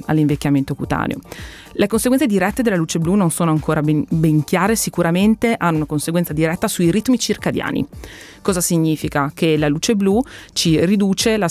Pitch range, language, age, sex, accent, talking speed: 150-180 Hz, Italian, 30-49, female, native, 160 wpm